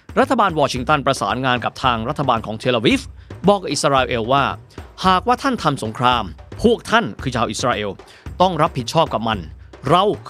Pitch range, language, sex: 120-175 Hz, Thai, male